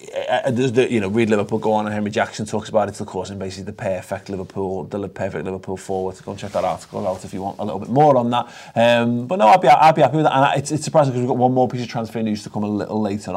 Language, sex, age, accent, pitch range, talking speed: English, male, 30-49, British, 110-130 Hz, 315 wpm